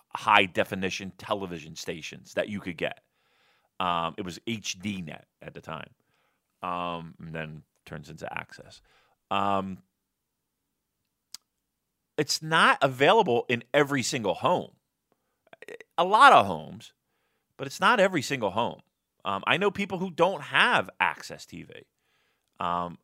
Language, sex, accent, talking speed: English, male, American, 125 wpm